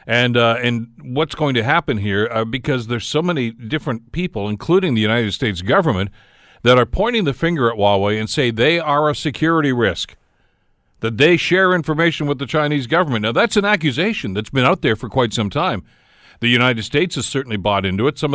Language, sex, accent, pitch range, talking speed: English, male, American, 110-145 Hz, 205 wpm